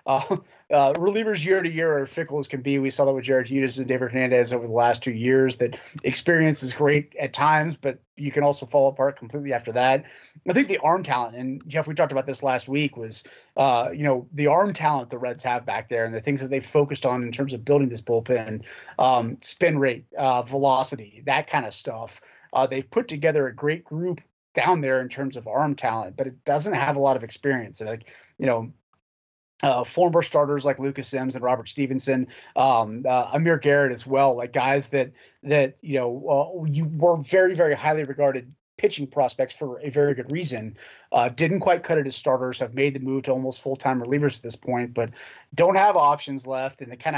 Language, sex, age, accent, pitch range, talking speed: English, male, 30-49, American, 130-145 Hz, 220 wpm